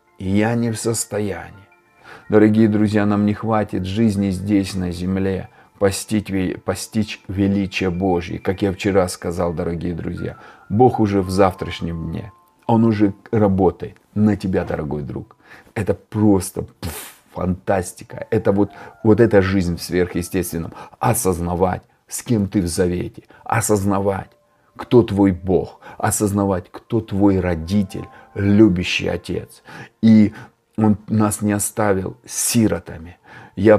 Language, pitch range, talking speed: Russian, 95-115 Hz, 120 wpm